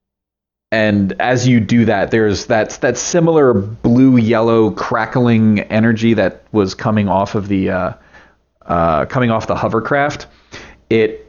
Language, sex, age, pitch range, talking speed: English, male, 30-49, 95-115 Hz, 140 wpm